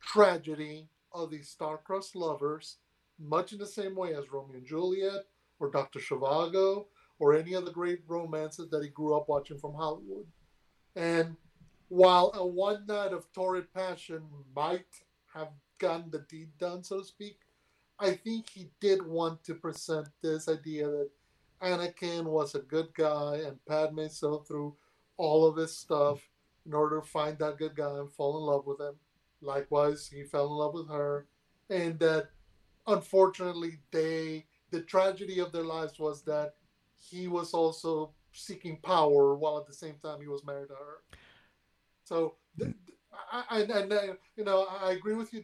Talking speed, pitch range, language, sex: 170 wpm, 155-185 Hz, English, male